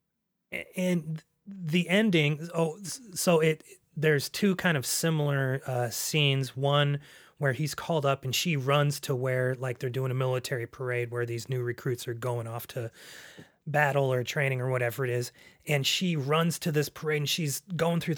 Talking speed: 180 wpm